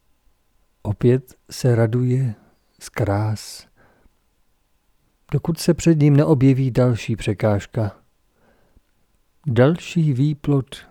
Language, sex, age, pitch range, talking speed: Czech, male, 50-69, 110-140 Hz, 75 wpm